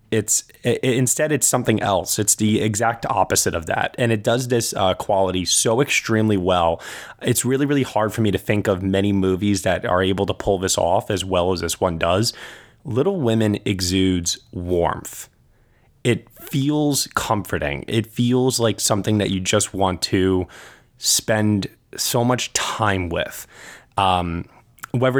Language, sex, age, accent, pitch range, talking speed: English, male, 20-39, American, 95-120 Hz, 160 wpm